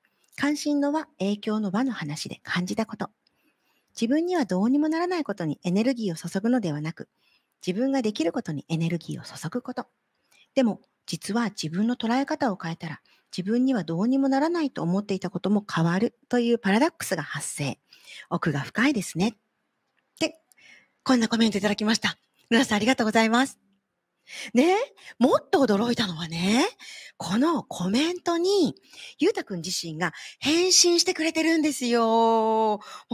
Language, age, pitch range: Japanese, 40-59, 190-275 Hz